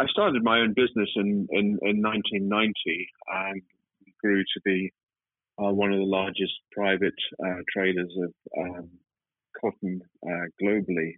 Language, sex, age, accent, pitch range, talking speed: English, male, 40-59, British, 95-105 Hz, 140 wpm